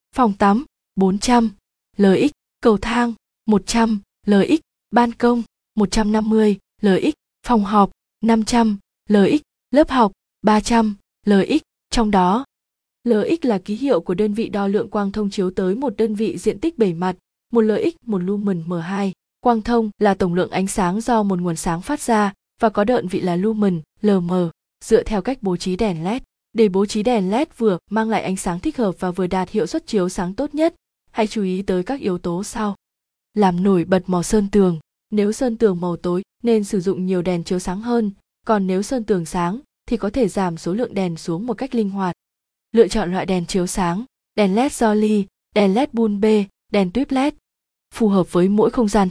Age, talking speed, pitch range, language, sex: 20-39, 205 wpm, 190-230 Hz, Vietnamese, female